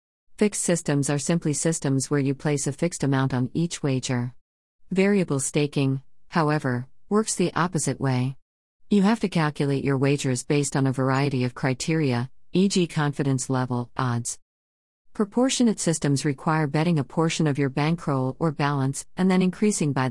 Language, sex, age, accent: English, female, 50-69, American